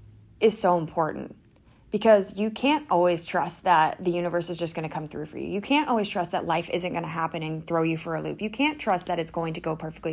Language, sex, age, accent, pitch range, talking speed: English, female, 30-49, American, 165-205 Hz, 250 wpm